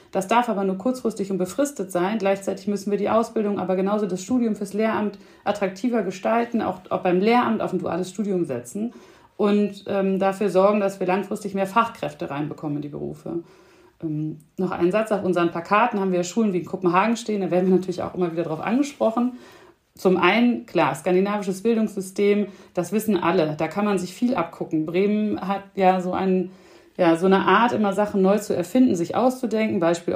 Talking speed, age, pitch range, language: 195 wpm, 40-59, 180-215 Hz, German